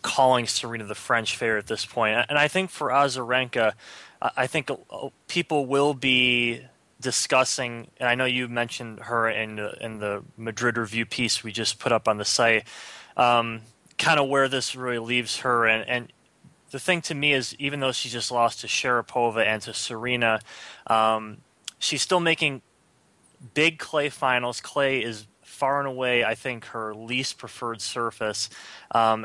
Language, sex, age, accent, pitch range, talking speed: English, male, 20-39, American, 115-135 Hz, 170 wpm